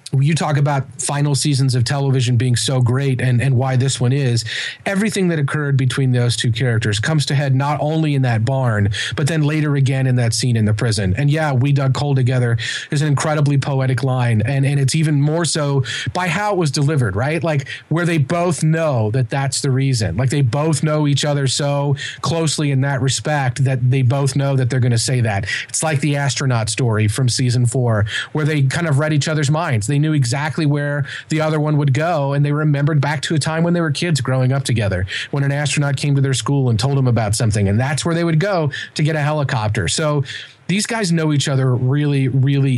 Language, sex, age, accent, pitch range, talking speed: English, male, 30-49, American, 125-150 Hz, 230 wpm